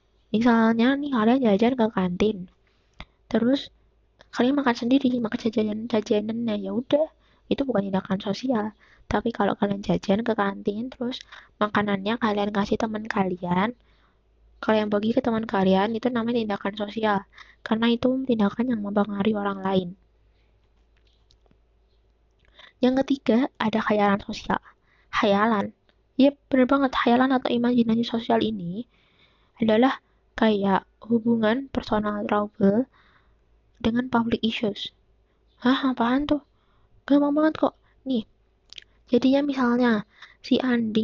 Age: 20-39